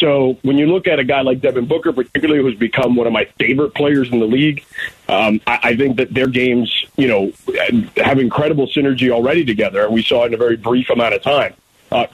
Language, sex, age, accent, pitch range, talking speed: English, male, 40-59, American, 120-155 Hz, 230 wpm